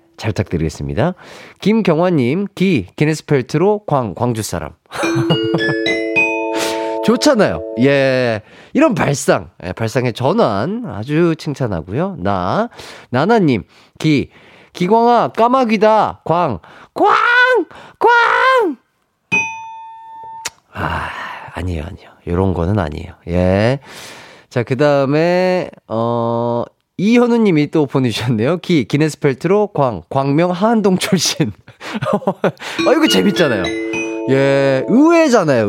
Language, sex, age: Korean, male, 30-49